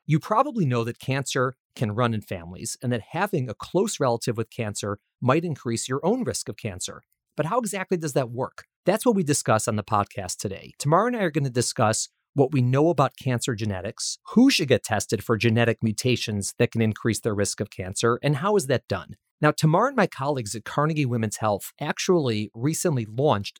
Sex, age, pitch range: male, 40-59, 110-150 Hz